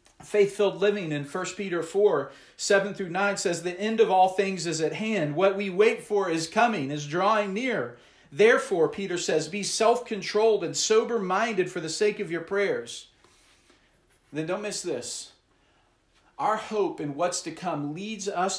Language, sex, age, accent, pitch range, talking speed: English, male, 40-59, American, 160-200 Hz, 170 wpm